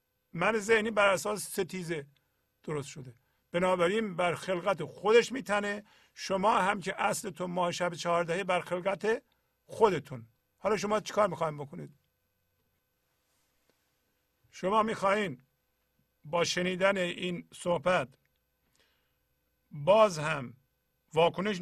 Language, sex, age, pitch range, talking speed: Persian, male, 50-69, 140-195 Hz, 100 wpm